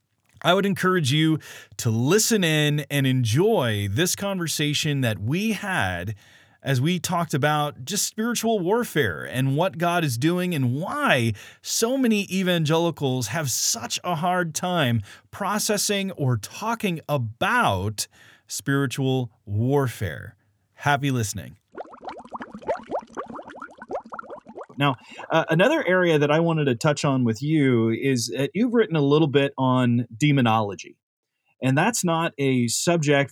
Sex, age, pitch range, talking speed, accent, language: male, 30-49, 120-165 Hz, 125 wpm, American, English